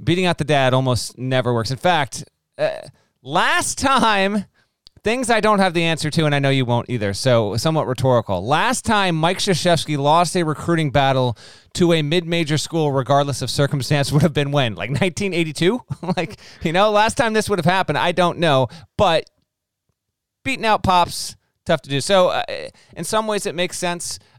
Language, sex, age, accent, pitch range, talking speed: English, male, 30-49, American, 125-170 Hz, 185 wpm